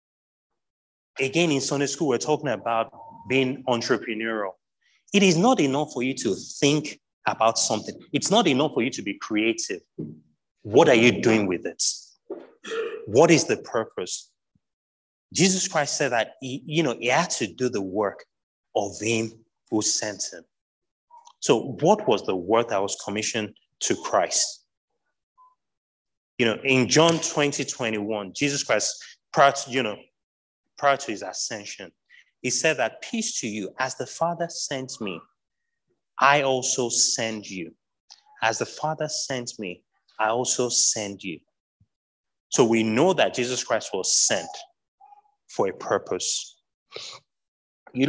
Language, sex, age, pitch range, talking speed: English, male, 30-49, 115-165 Hz, 145 wpm